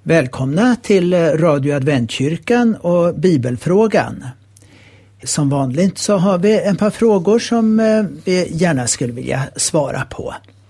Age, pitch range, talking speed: 60-79, 115-175 Hz, 120 wpm